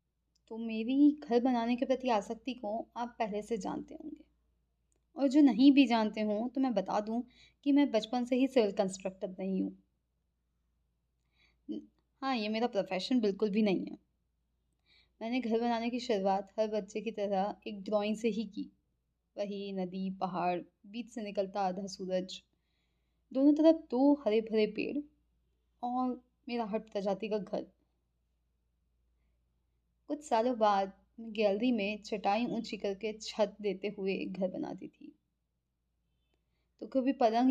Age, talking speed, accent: 20-39, 145 wpm, native